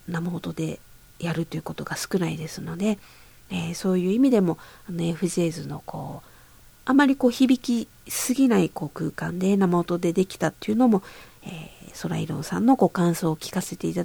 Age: 50-69